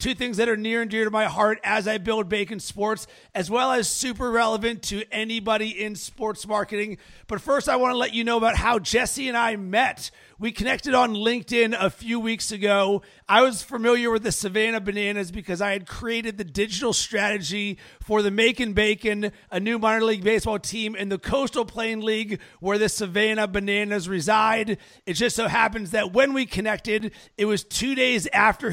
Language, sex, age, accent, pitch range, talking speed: English, male, 40-59, American, 205-235 Hz, 195 wpm